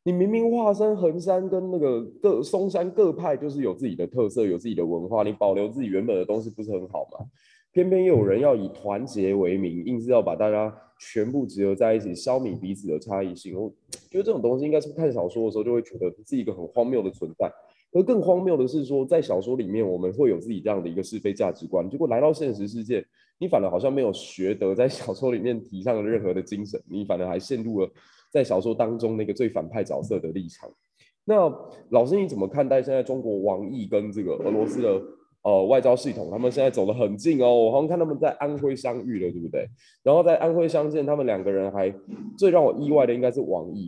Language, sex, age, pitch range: Chinese, male, 20-39, 105-165 Hz